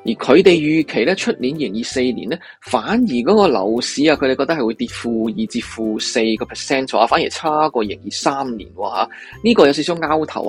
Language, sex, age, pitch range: Chinese, male, 20-39, 115-180 Hz